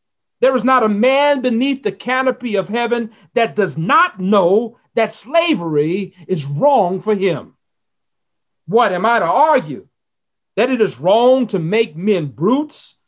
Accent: American